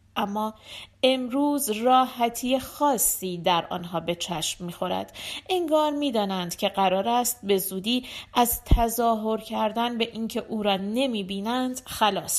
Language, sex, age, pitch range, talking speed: Persian, female, 40-59, 195-295 Hz, 130 wpm